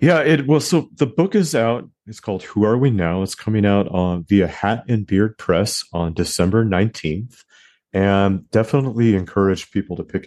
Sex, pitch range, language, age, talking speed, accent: male, 85-105 Hz, English, 40-59, 185 wpm, American